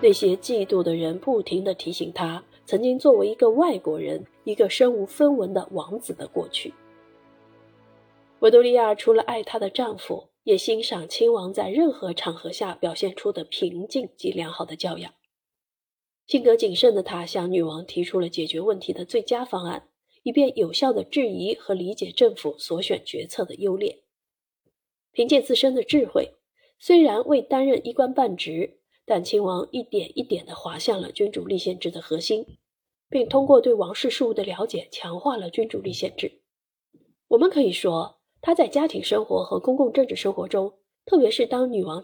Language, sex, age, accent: Chinese, female, 30-49, native